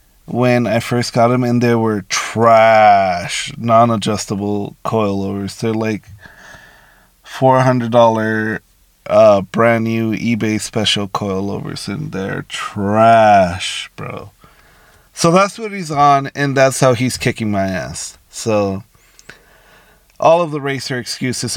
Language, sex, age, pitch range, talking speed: English, male, 30-49, 110-145 Hz, 115 wpm